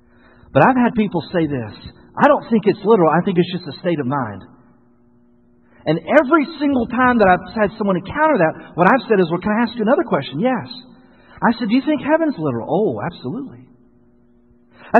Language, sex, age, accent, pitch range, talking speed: English, male, 40-59, American, 150-240 Hz, 205 wpm